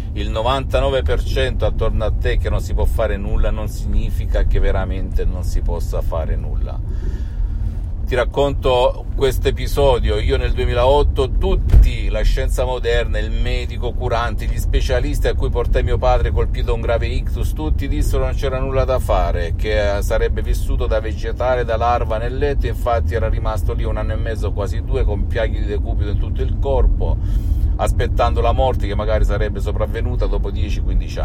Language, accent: Italian, native